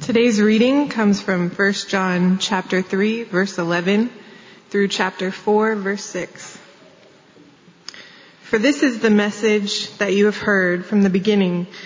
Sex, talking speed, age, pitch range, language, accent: female, 135 wpm, 20-39, 185-220 Hz, English, American